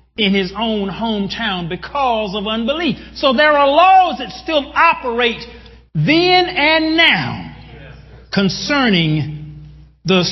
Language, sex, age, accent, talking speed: English, male, 40-59, American, 110 wpm